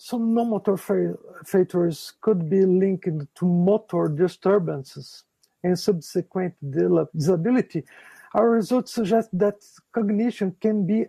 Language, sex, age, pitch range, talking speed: English, male, 50-69, 165-210 Hz, 105 wpm